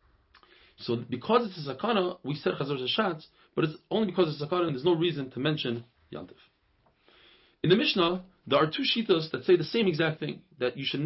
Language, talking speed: English, 210 wpm